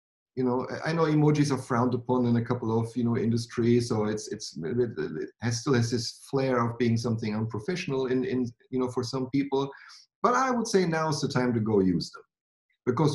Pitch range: 110-140 Hz